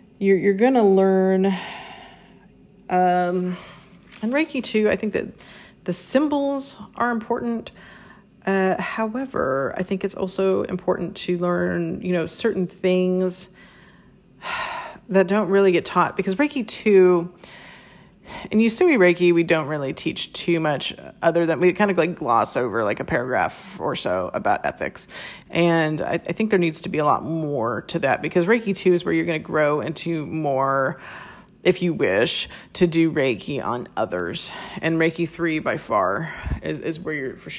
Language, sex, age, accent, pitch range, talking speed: English, female, 30-49, American, 170-200 Hz, 170 wpm